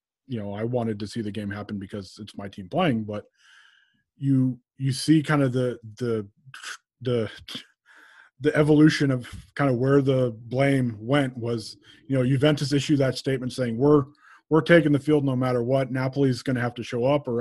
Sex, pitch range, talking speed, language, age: male, 115-140 Hz, 190 wpm, English, 20-39